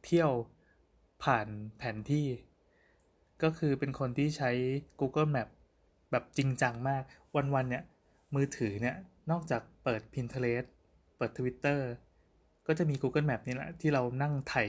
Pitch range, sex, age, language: 125-150 Hz, male, 20-39, Thai